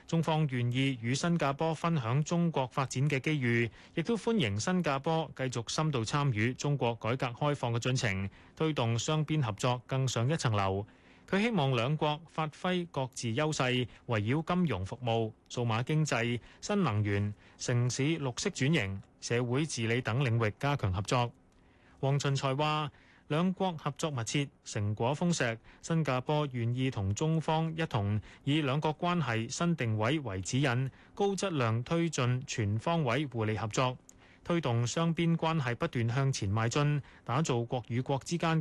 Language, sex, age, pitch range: Chinese, male, 20-39, 115-160 Hz